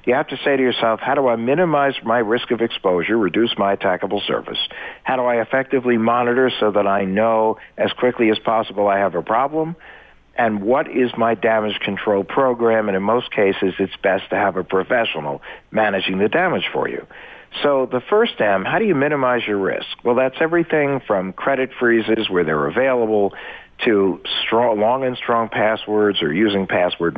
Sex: male